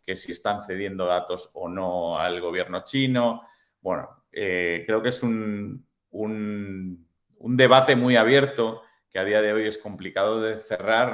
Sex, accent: male, Spanish